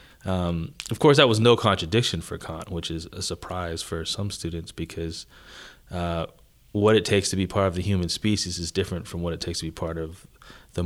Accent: American